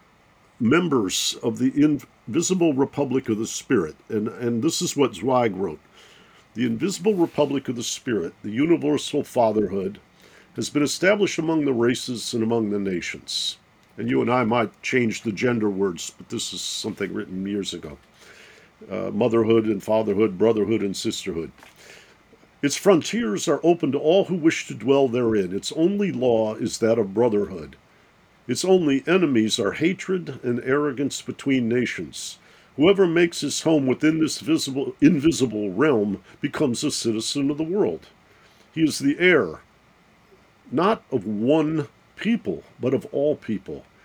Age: 50-69